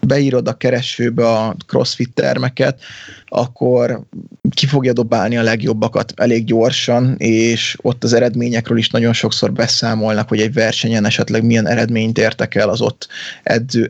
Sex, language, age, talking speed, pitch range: male, Hungarian, 20-39, 140 wpm, 110-125 Hz